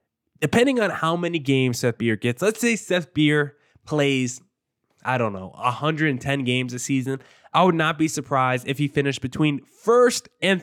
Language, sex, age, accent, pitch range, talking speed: English, male, 20-39, American, 125-160 Hz, 175 wpm